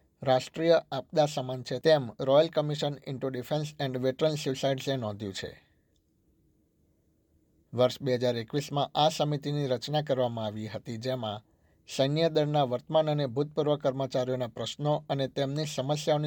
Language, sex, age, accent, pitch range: Gujarati, male, 60-79, native, 120-145 Hz